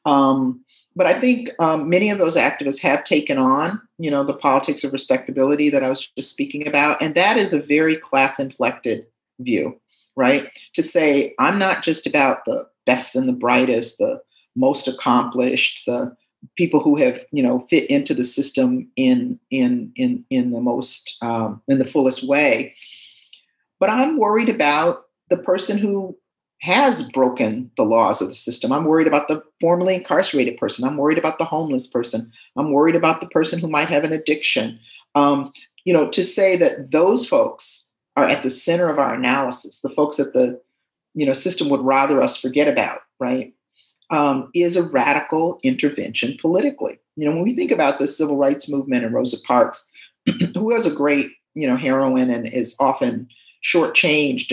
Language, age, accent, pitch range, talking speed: English, 50-69, American, 135-210 Hz, 180 wpm